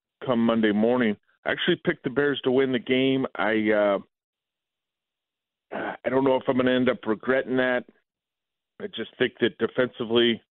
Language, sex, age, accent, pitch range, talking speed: English, male, 40-59, American, 105-125 Hz, 170 wpm